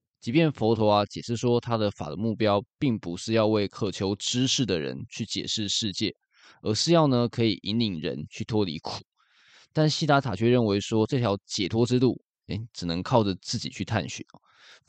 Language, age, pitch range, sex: Chinese, 20-39, 100-125 Hz, male